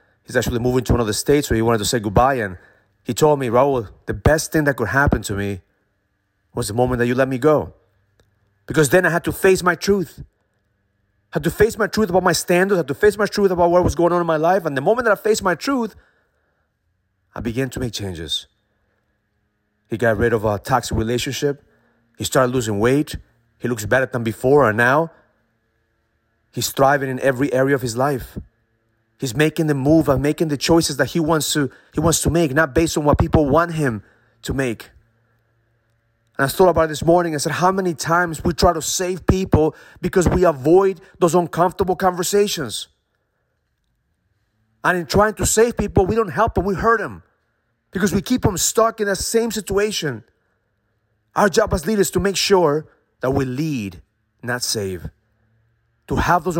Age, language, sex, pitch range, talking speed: 30-49, English, male, 115-175 Hz, 200 wpm